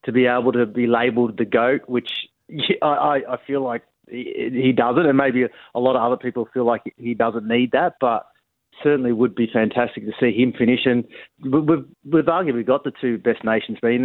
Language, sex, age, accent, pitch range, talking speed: English, male, 30-49, Australian, 115-135 Hz, 200 wpm